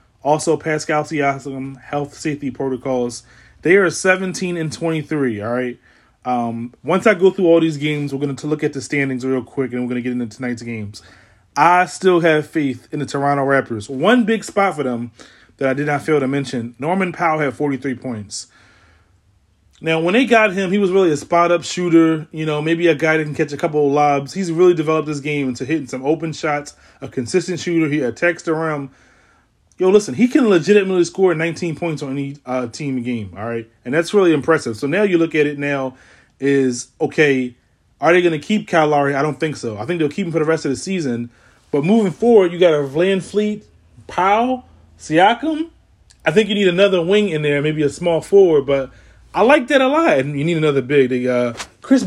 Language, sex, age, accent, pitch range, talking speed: English, male, 20-39, American, 130-175 Hz, 220 wpm